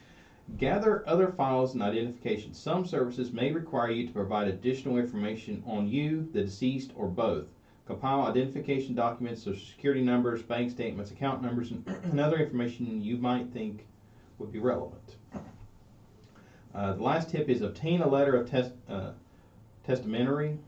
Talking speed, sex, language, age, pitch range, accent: 145 wpm, male, English, 40-59, 105-130 Hz, American